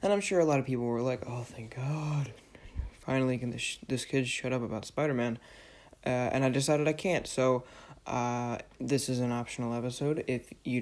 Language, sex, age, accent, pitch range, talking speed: English, male, 20-39, American, 120-135 Hz, 205 wpm